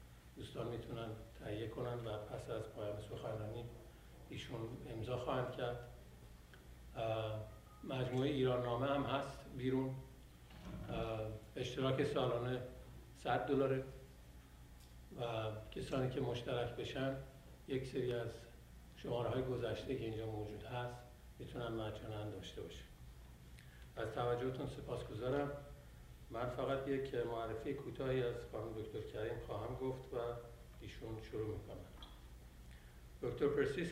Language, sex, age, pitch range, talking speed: Persian, male, 60-79, 105-130 Hz, 85 wpm